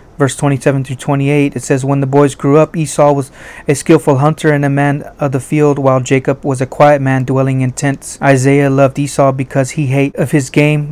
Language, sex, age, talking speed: English, male, 30-49, 205 wpm